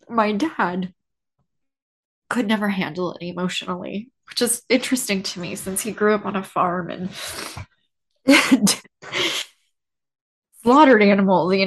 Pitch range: 155-195 Hz